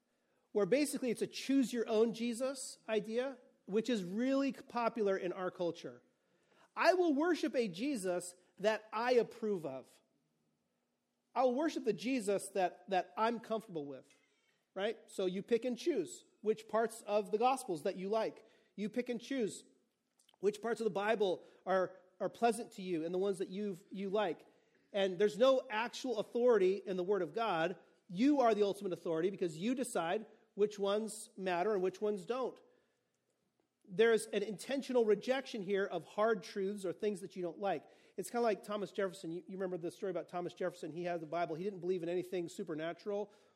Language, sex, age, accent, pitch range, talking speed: English, male, 40-59, American, 180-230 Hz, 180 wpm